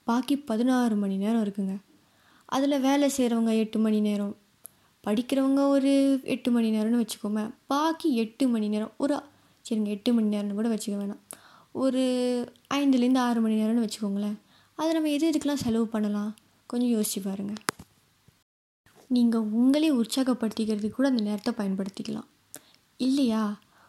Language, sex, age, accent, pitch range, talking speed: Tamil, female, 20-39, native, 215-255 Hz, 130 wpm